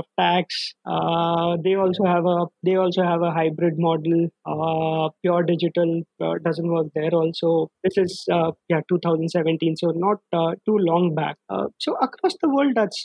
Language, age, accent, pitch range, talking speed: English, 20-39, Indian, 170-205 Hz, 170 wpm